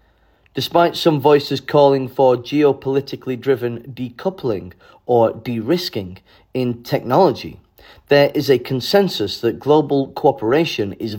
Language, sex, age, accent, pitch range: Chinese, male, 40-59, British, 120-150 Hz